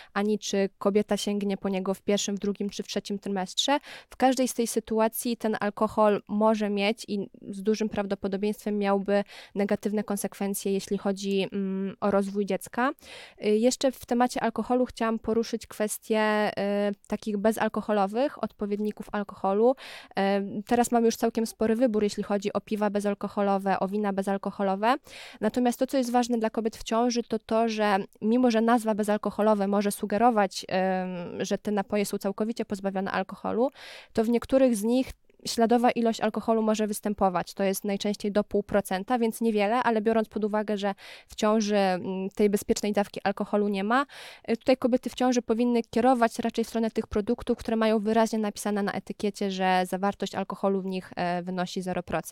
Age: 20-39